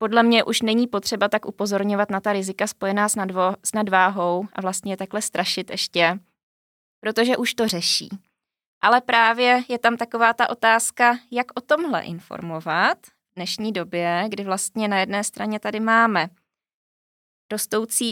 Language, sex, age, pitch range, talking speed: Czech, female, 20-39, 190-230 Hz, 155 wpm